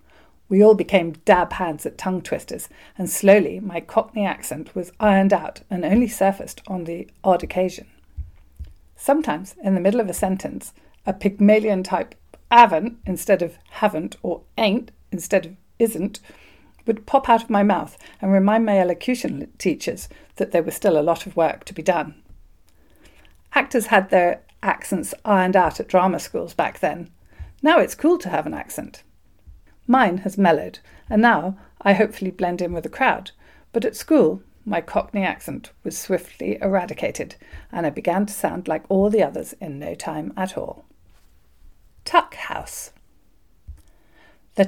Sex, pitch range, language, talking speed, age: female, 175-220 Hz, English, 160 wpm, 40-59